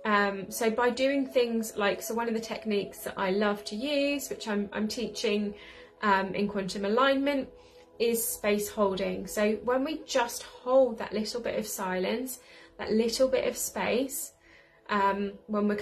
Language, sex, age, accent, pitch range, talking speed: English, female, 20-39, British, 210-270 Hz, 170 wpm